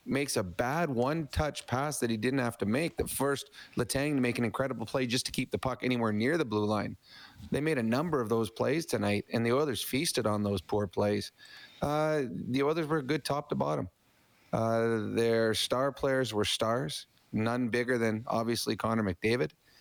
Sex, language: male, English